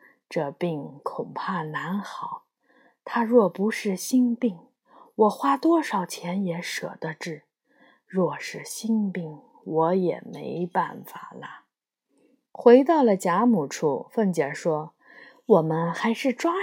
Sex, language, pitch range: female, Chinese, 170-260 Hz